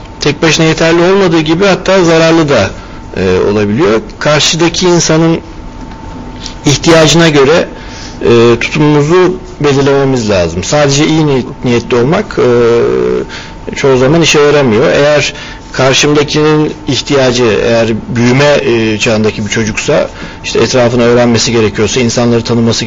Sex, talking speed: male, 115 wpm